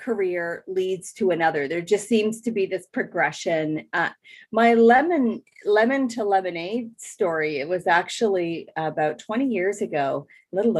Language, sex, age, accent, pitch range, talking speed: English, female, 30-49, American, 160-220 Hz, 150 wpm